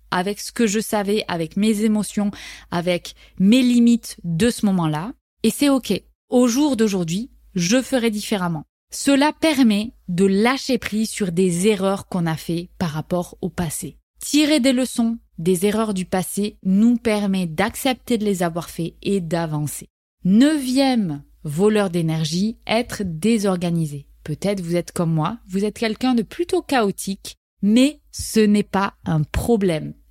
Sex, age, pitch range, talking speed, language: female, 20-39, 180-235 Hz, 150 wpm, French